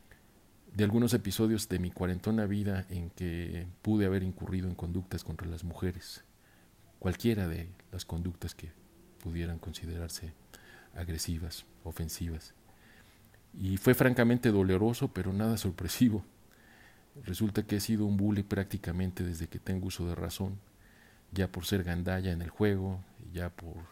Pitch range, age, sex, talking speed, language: 90-105 Hz, 50-69, male, 140 wpm, Spanish